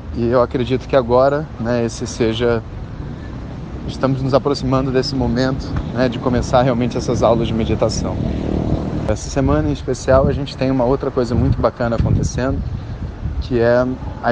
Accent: Brazilian